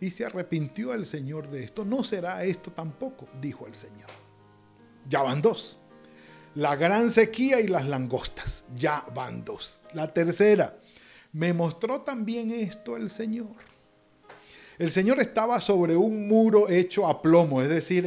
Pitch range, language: 140-205 Hz, Spanish